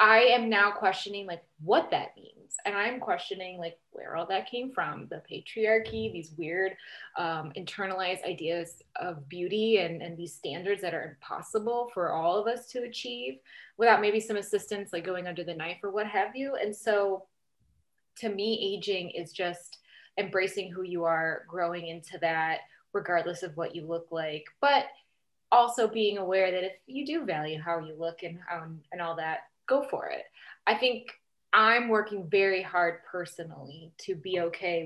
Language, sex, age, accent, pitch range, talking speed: English, female, 20-39, American, 170-220 Hz, 175 wpm